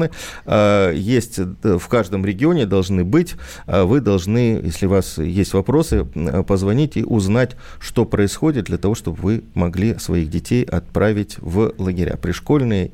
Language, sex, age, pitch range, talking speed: Russian, male, 40-59, 95-130 Hz, 135 wpm